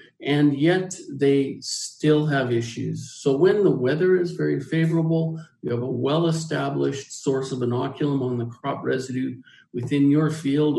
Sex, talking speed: male, 150 wpm